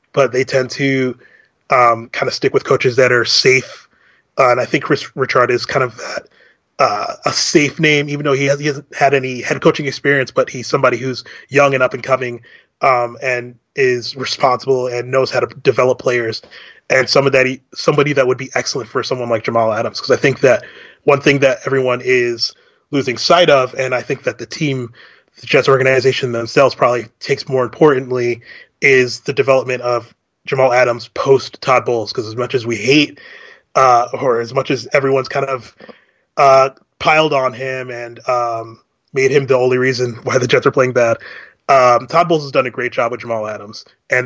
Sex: male